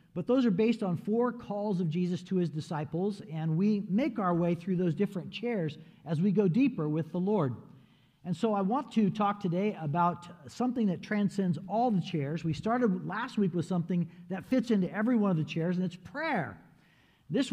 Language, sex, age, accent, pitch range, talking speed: English, male, 50-69, American, 165-210 Hz, 205 wpm